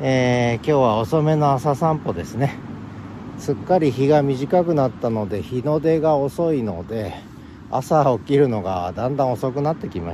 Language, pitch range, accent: Japanese, 105-135 Hz, native